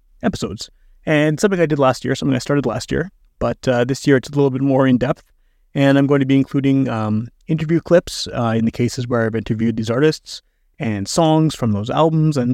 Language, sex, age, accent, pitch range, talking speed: English, male, 30-49, American, 115-140 Hz, 225 wpm